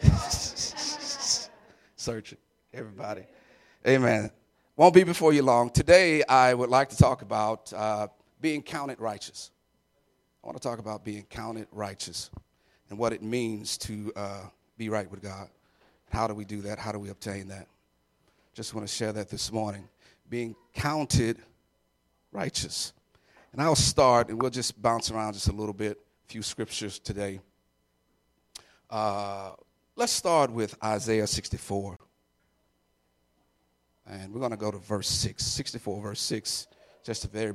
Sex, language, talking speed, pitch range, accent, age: male, English, 150 wpm, 100-125 Hz, American, 40-59